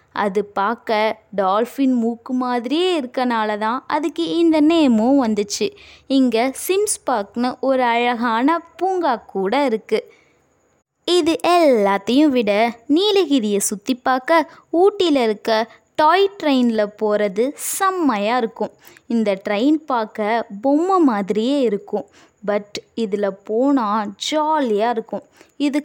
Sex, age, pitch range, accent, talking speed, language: female, 20-39, 220-295 Hz, native, 100 wpm, Tamil